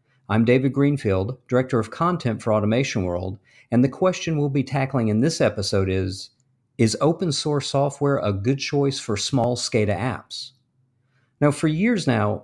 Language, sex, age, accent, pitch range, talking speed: English, male, 50-69, American, 110-140 Hz, 165 wpm